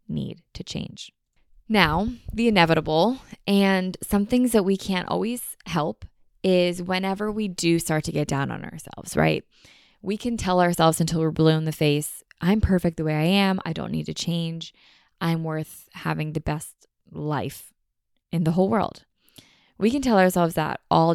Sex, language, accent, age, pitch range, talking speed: female, English, American, 20-39, 155-195 Hz, 175 wpm